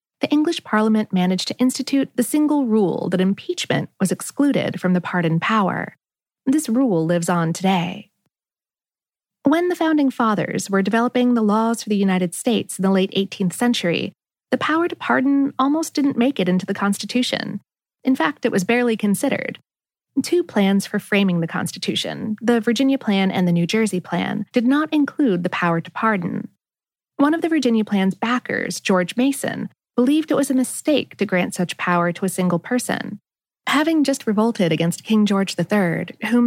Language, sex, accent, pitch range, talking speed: English, female, American, 190-265 Hz, 175 wpm